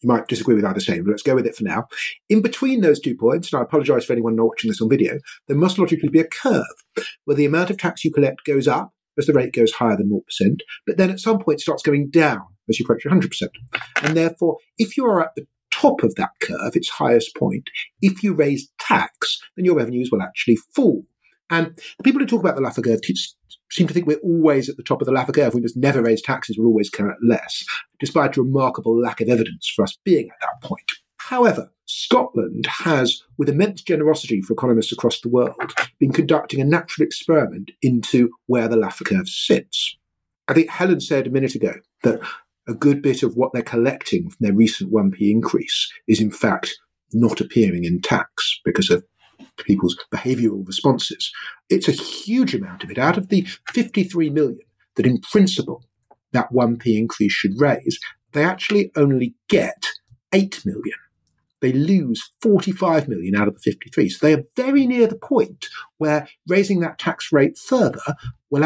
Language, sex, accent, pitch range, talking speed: English, male, British, 120-180 Hz, 200 wpm